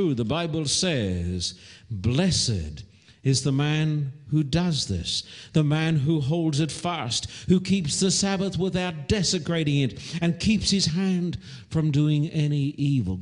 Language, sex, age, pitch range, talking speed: English, male, 60-79, 125-170 Hz, 140 wpm